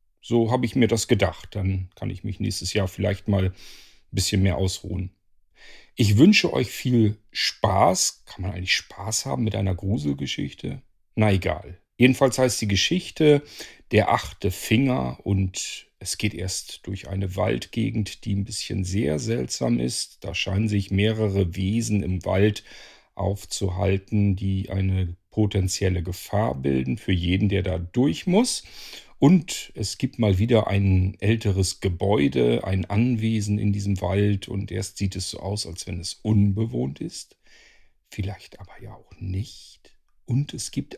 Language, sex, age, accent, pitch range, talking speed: German, male, 40-59, German, 95-115 Hz, 150 wpm